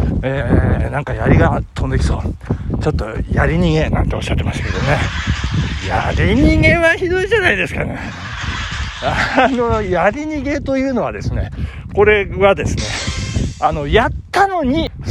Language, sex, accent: Japanese, male, native